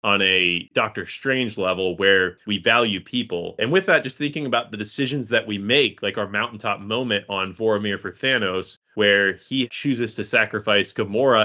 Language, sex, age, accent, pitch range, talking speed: English, male, 30-49, American, 100-125 Hz, 180 wpm